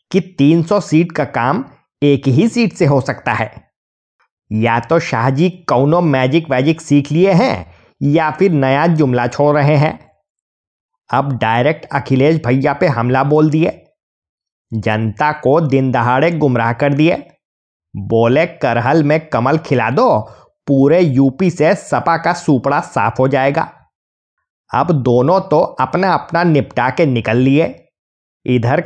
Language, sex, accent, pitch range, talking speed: Hindi, male, native, 125-165 Hz, 140 wpm